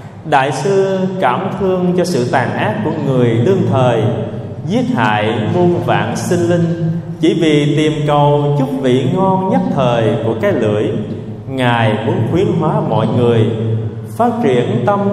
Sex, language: male, Vietnamese